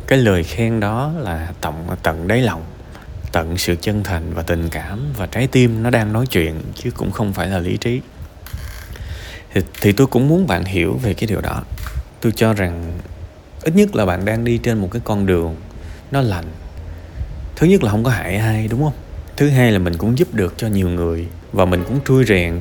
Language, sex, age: Vietnamese, male, 20-39